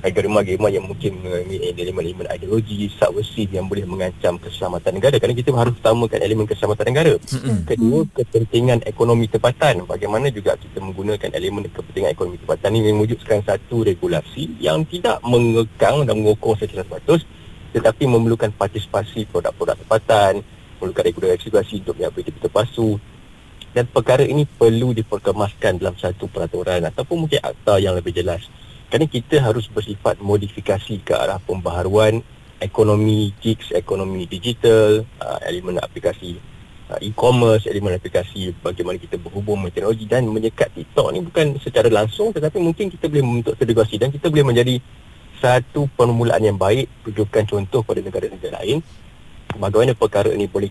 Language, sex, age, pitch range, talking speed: Malay, male, 30-49, 100-125 Hz, 145 wpm